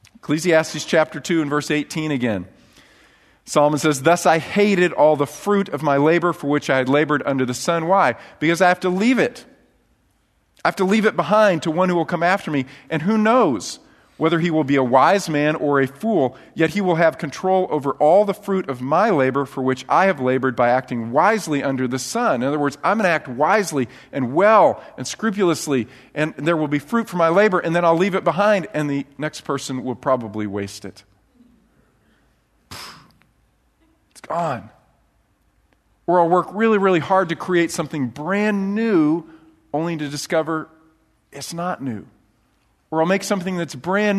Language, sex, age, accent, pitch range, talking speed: English, male, 40-59, American, 130-170 Hz, 190 wpm